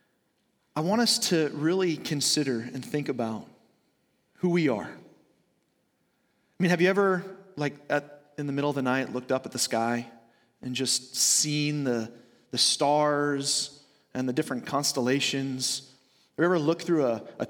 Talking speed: 160 wpm